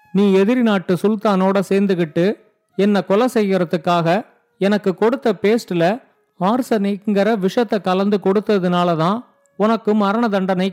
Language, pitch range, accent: Tamil, 180-215 Hz, native